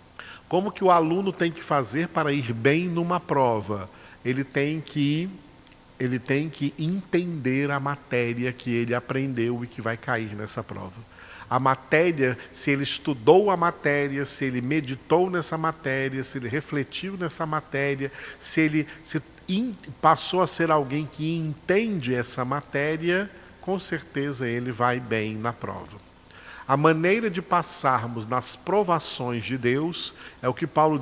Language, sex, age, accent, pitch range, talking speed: Portuguese, male, 40-59, Brazilian, 125-160 Hz, 145 wpm